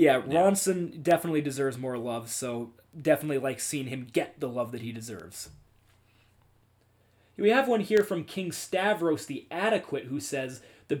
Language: English